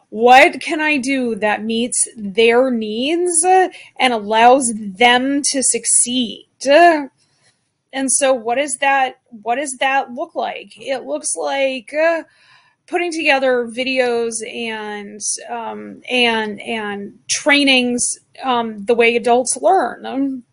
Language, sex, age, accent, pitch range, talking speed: English, female, 30-49, American, 230-275 Hz, 115 wpm